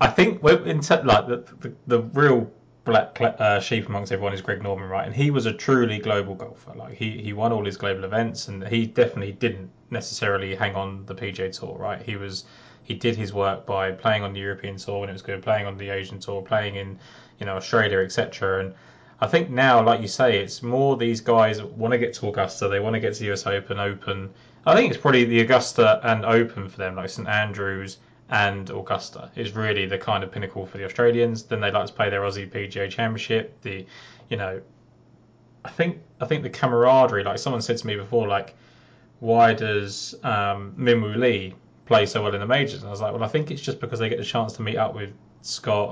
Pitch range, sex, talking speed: 100-120 Hz, male, 230 wpm